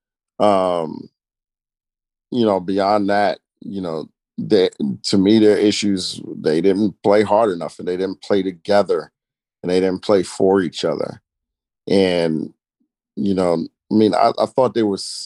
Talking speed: 155 wpm